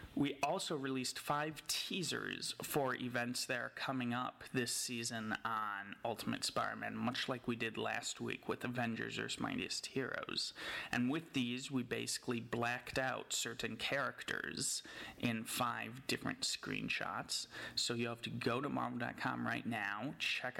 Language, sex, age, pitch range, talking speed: English, male, 30-49, 115-130 Hz, 145 wpm